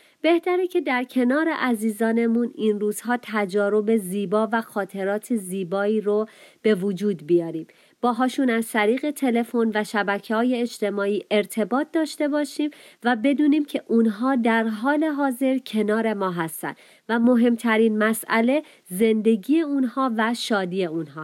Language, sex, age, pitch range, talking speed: Persian, female, 30-49, 210-280 Hz, 125 wpm